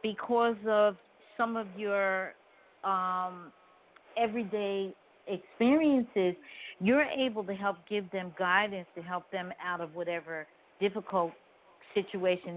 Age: 50-69